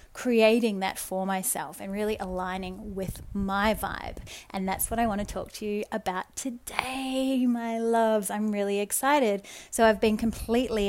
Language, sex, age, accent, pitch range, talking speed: English, female, 30-49, Australian, 195-230 Hz, 165 wpm